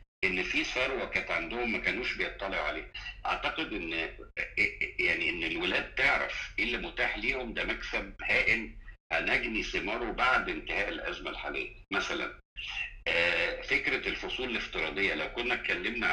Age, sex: 60-79, male